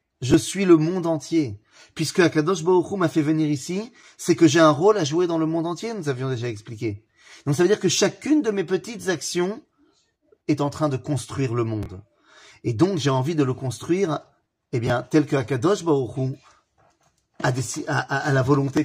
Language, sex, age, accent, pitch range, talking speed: French, male, 30-49, French, 120-160 Hz, 205 wpm